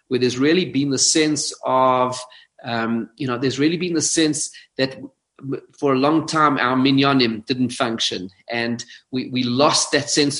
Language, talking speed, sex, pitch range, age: English, 175 wpm, male, 130-160 Hz, 30-49